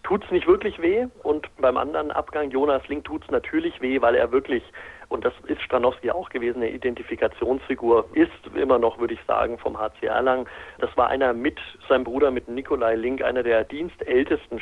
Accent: German